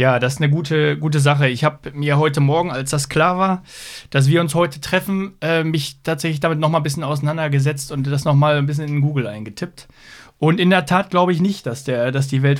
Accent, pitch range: German, 130-160 Hz